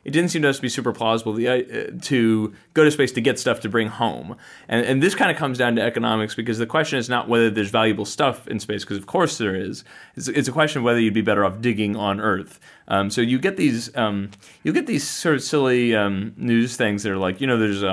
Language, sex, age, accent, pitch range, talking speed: English, male, 30-49, American, 105-130 Hz, 270 wpm